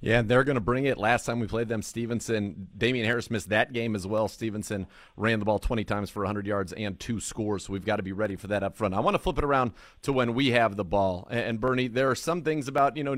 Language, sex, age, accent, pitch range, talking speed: English, male, 40-59, American, 110-135 Hz, 285 wpm